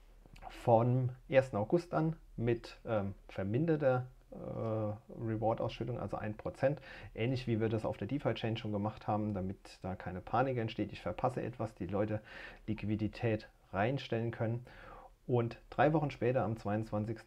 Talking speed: 140 wpm